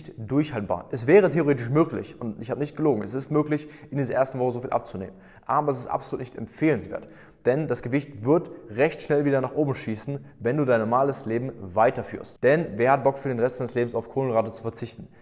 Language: German